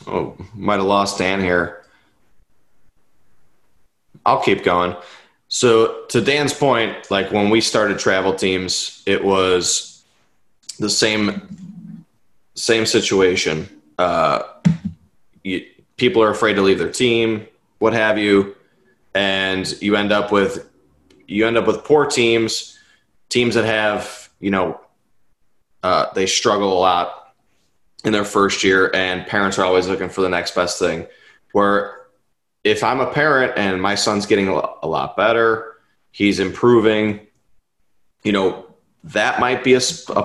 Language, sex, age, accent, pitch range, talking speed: English, male, 20-39, American, 95-115 Hz, 135 wpm